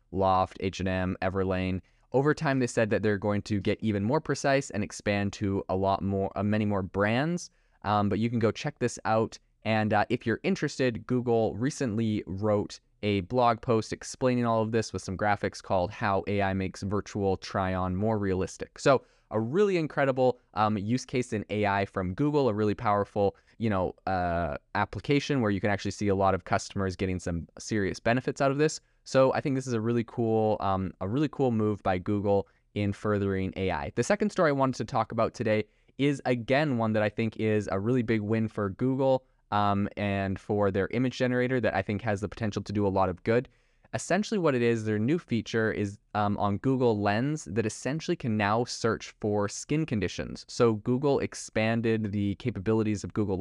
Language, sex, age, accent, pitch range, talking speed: English, male, 20-39, American, 100-125 Hz, 200 wpm